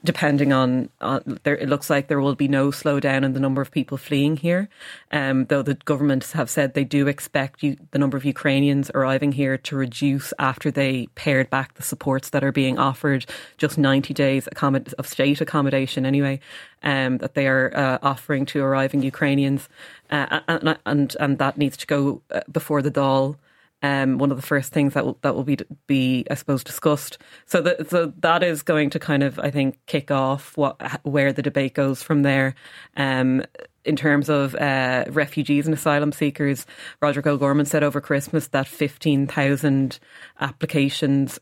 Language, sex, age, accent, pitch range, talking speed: English, female, 30-49, Irish, 135-145 Hz, 185 wpm